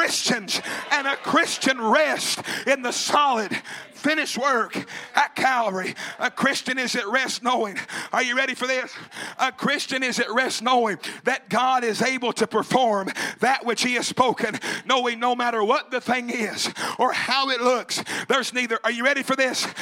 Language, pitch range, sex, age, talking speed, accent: English, 230-265 Hz, male, 50-69, 180 wpm, American